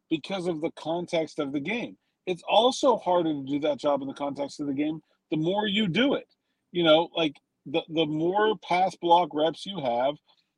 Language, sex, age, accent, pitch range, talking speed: English, male, 40-59, American, 160-215 Hz, 205 wpm